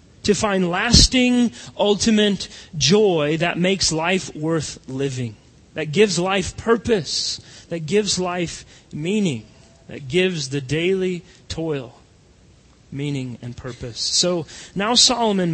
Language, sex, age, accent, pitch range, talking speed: English, male, 30-49, American, 145-195 Hz, 110 wpm